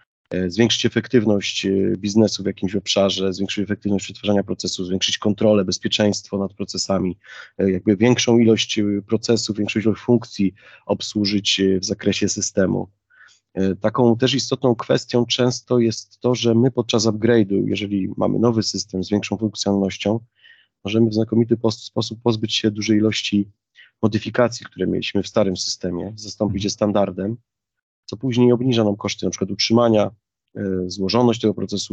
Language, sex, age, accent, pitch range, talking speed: Polish, male, 30-49, native, 100-115 Hz, 135 wpm